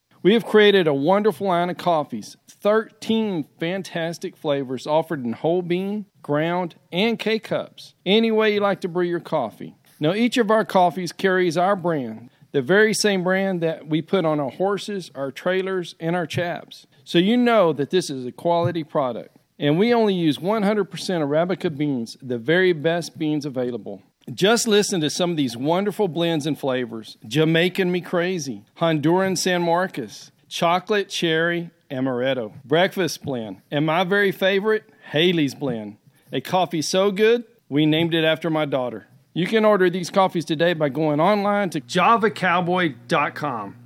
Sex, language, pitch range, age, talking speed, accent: male, English, 150-190 Hz, 40-59, 160 wpm, American